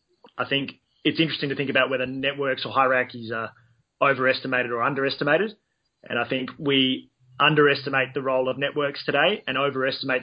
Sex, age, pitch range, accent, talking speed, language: male, 30-49, 125-140 Hz, Australian, 160 wpm, English